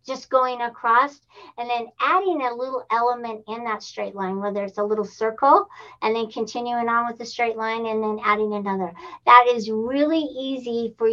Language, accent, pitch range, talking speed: English, American, 220-265 Hz, 190 wpm